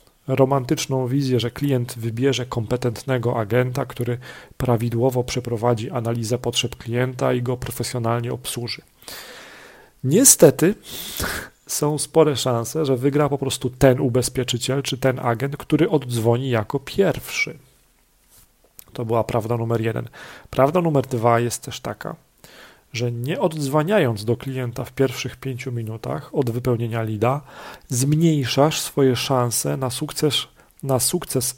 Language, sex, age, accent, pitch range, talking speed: Polish, male, 40-59, native, 120-135 Hz, 120 wpm